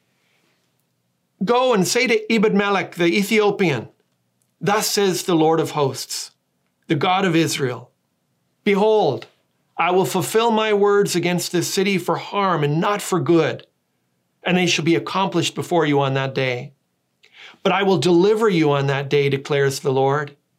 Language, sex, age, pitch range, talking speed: English, male, 40-59, 140-195 Hz, 155 wpm